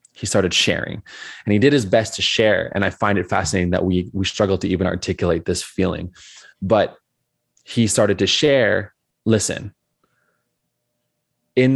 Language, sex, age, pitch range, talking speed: English, male, 20-39, 95-120 Hz, 160 wpm